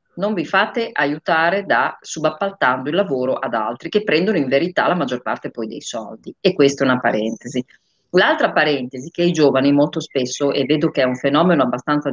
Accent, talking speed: native, 195 wpm